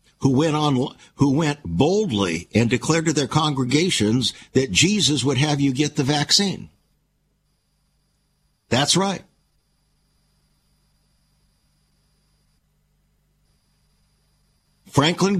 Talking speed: 85 wpm